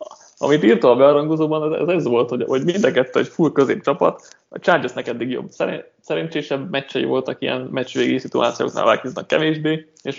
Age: 20-39